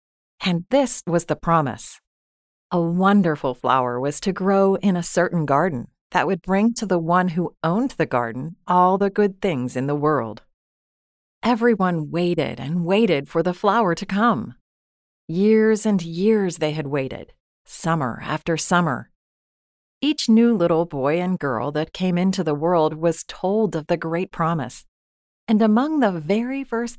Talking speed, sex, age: 160 wpm, female, 40-59